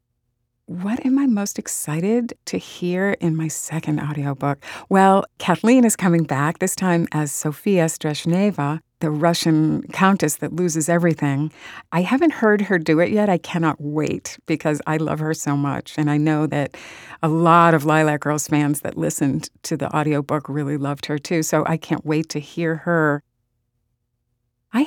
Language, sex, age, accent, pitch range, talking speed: English, female, 50-69, American, 150-180 Hz, 170 wpm